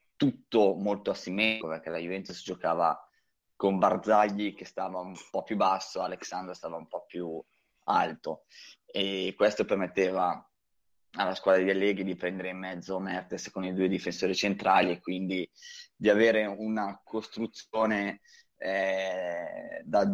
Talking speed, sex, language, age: 135 wpm, male, Italian, 20-39